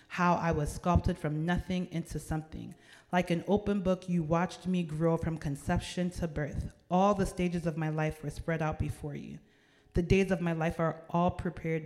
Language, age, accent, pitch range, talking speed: English, 30-49, American, 150-180 Hz, 195 wpm